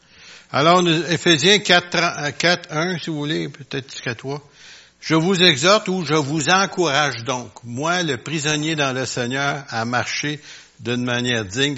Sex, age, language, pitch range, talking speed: male, 60-79, French, 120-175 Hz, 165 wpm